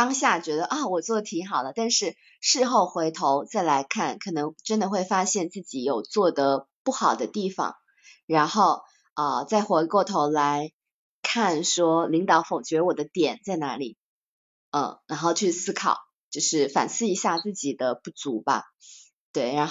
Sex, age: female, 20-39